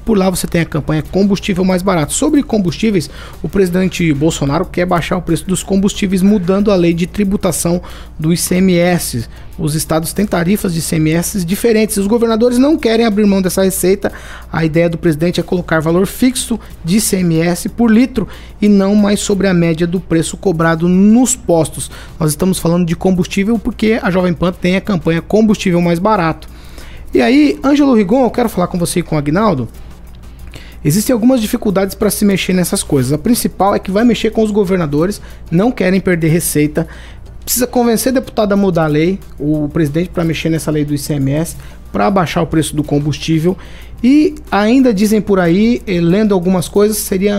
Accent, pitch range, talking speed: Brazilian, 165-215 Hz, 180 wpm